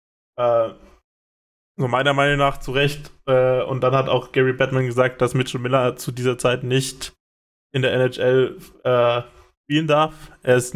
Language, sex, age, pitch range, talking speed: German, male, 10-29, 120-135 Hz, 160 wpm